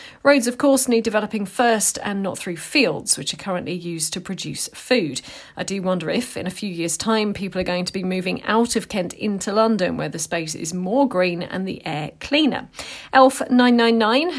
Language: English